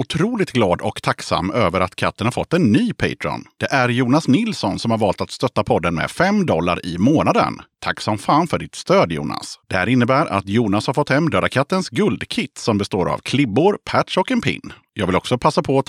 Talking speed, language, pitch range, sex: 225 wpm, Swedish, 100-145 Hz, male